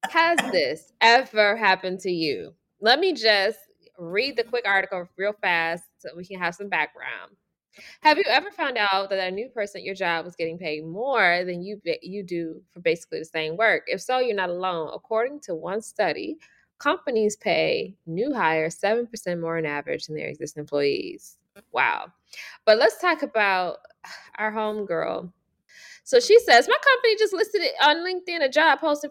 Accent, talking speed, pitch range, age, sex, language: American, 180 wpm, 185-310 Hz, 20-39, female, English